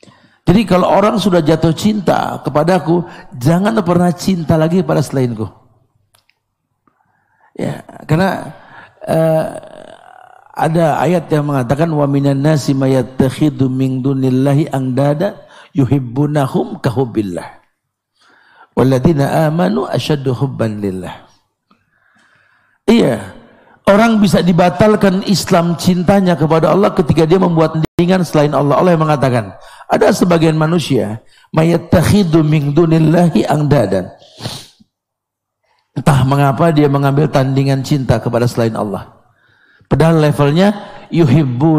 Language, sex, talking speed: Indonesian, male, 105 wpm